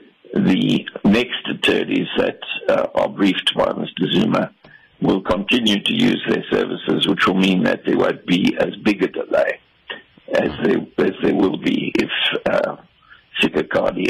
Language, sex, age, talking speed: English, male, 60-79, 155 wpm